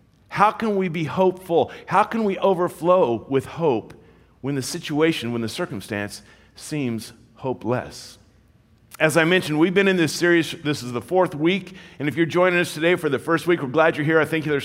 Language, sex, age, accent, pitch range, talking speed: English, male, 50-69, American, 150-200 Hz, 200 wpm